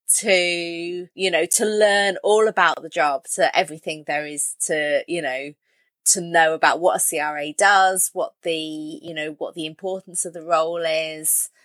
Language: English